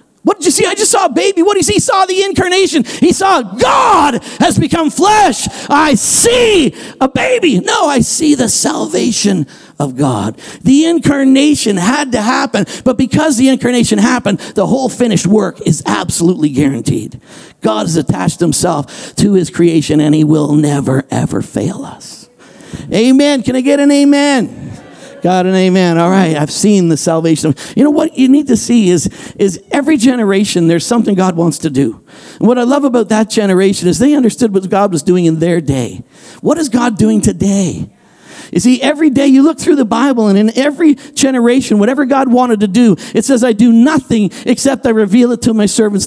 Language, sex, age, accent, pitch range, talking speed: English, male, 50-69, American, 205-295 Hz, 195 wpm